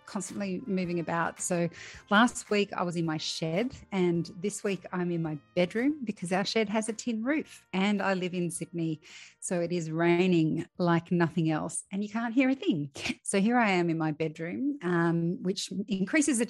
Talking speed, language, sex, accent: 195 wpm, English, female, Australian